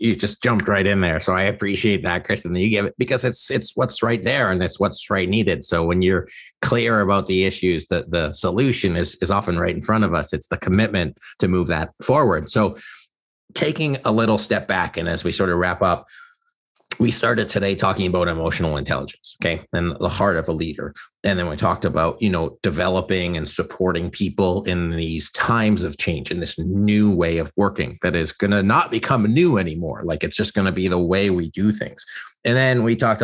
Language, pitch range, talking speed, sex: English, 85-100 Hz, 220 wpm, male